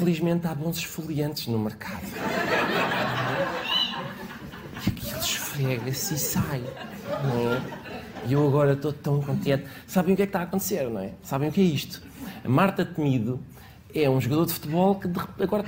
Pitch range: 145-195 Hz